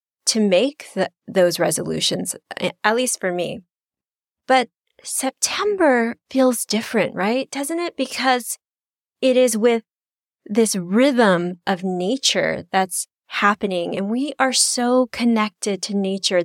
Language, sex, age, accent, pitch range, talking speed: English, female, 30-49, American, 185-230 Hz, 115 wpm